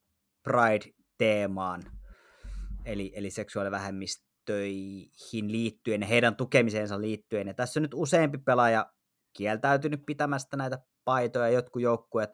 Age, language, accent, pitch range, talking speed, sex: 20-39, Finnish, native, 105-125 Hz, 90 wpm, male